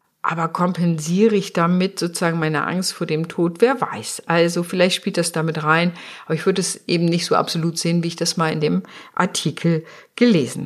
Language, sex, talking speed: German, female, 195 wpm